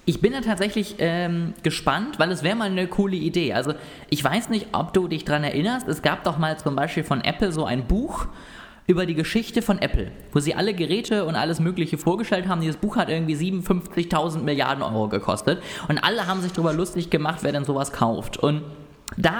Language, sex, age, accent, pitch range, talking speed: German, male, 20-39, German, 145-190 Hz, 210 wpm